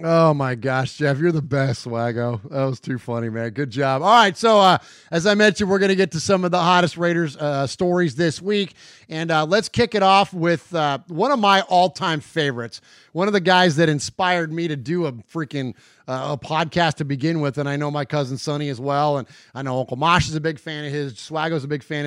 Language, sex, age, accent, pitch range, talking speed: English, male, 30-49, American, 140-180 Hz, 240 wpm